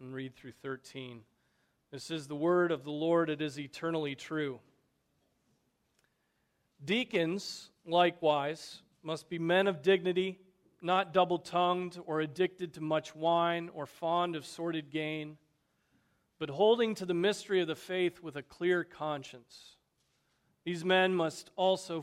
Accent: American